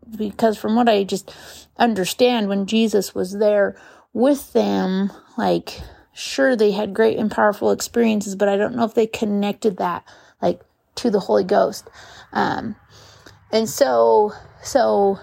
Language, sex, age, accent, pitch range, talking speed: English, female, 30-49, American, 205-240 Hz, 145 wpm